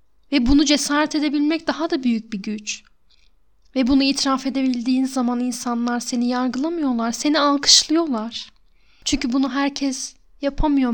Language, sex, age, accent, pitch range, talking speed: Turkish, female, 10-29, native, 225-275 Hz, 125 wpm